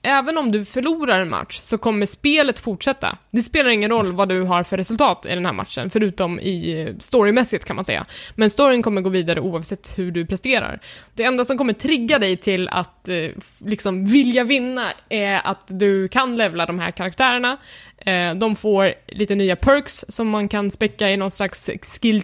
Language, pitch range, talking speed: Swedish, 190-235 Hz, 185 wpm